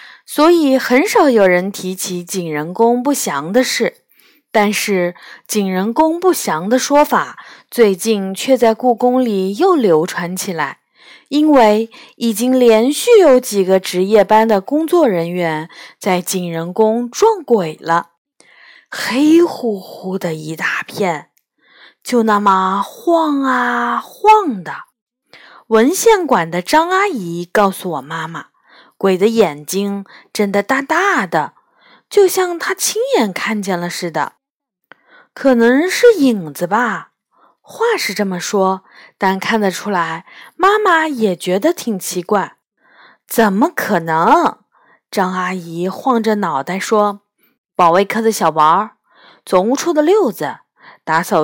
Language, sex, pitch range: Chinese, female, 185-290 Hz